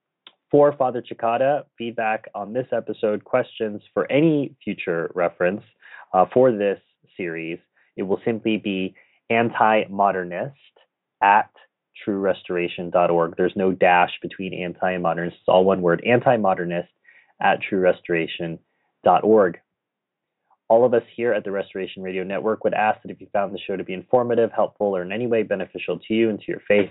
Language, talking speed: English, 155 wpm